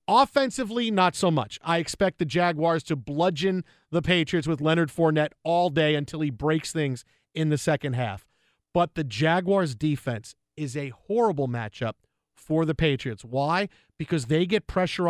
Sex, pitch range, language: male, 150-210 Hz, English